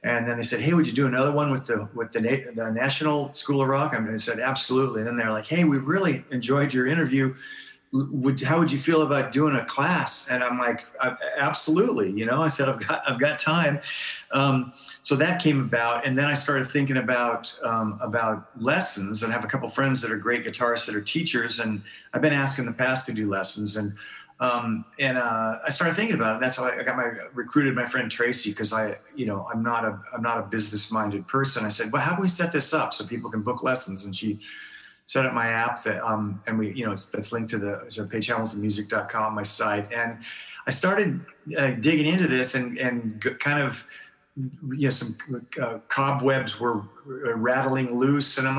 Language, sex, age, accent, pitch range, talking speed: English, male, 40-59, American, 115-145 Hz, 225 wpm